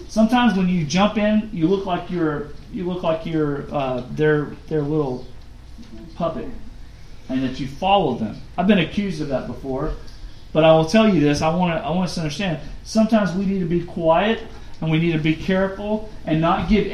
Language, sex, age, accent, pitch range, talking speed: English, male, 40-59, American, 155-195 Hz, 200 wpm